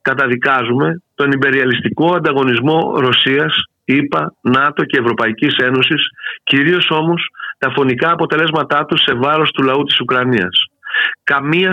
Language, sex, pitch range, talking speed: Greek, male, 130-165 Hz, 120 wpm